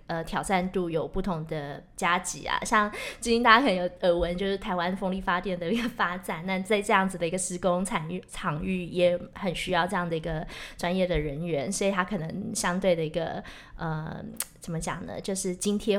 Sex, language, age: female, Chinese, 20-39